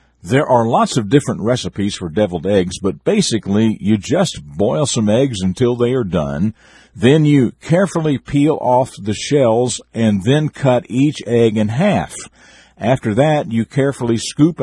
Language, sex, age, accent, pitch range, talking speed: English, male, 50-69, American, 105-145 Hz, 160 wpm